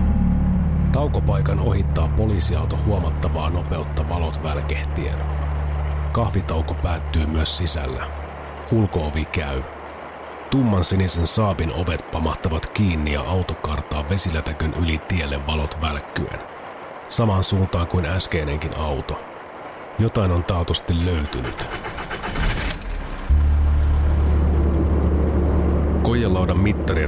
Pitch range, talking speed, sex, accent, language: 75-85 Hz, 80 wpm, male, native, Finnish